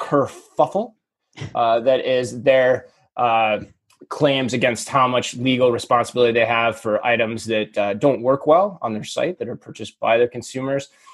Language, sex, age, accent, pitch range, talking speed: English, male, 20-39, American, 115-150 Hz, 155 wpm